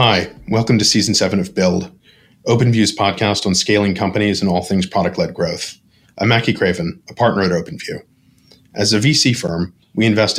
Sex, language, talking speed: male, English, 175 wpm